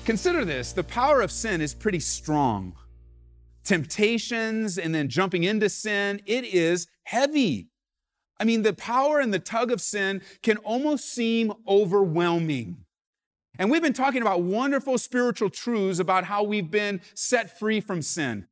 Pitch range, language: 175-230 Hz, English